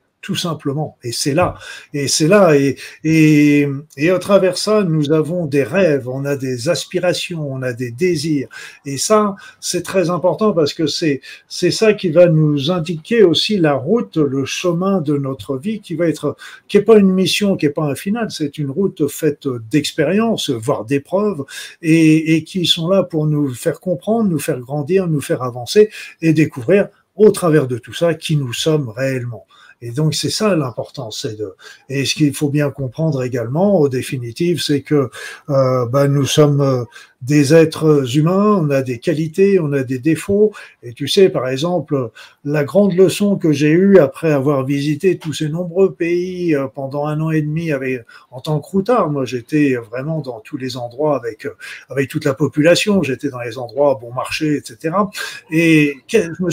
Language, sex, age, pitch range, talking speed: French, male, 50-69, 140-185 Hz, 190 wpm